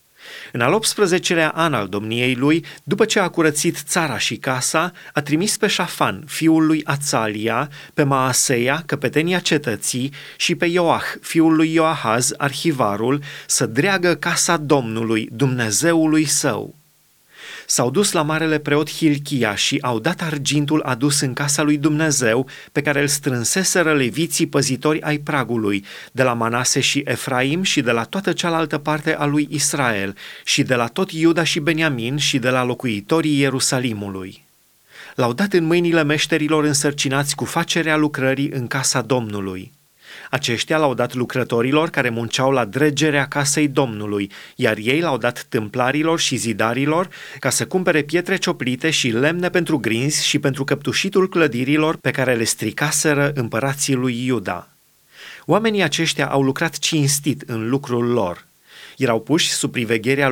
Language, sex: Romanian, male